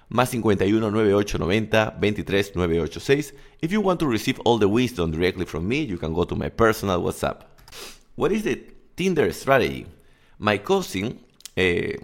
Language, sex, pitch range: English, male, 100-140 Hz